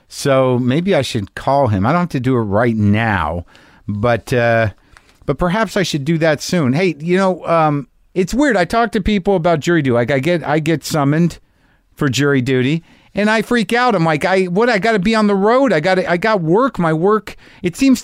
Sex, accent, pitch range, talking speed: male, American, 130-190 Hz, 230 wpm